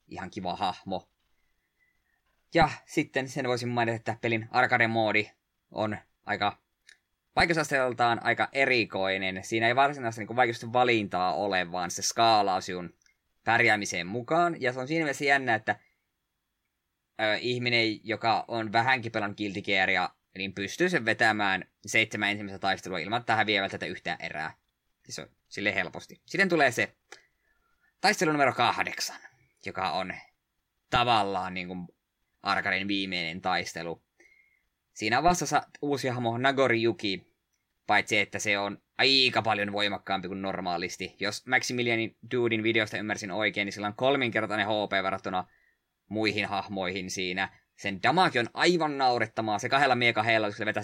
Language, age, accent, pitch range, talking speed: Finnish, 20-39, native, 95-120 Hz, 130 wpm